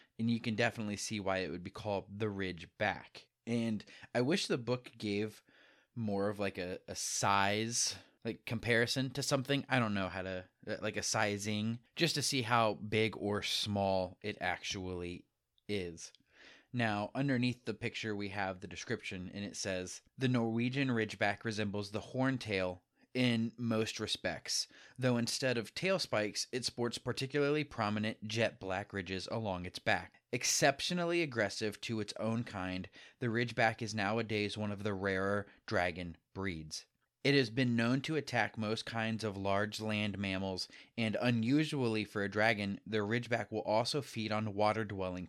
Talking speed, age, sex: 160 wpm, 20-39, male